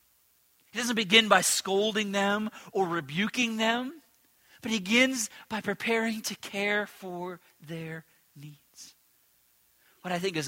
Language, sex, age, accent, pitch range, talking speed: English, male, 40-59, American, 130-195 Hz, 130 wpm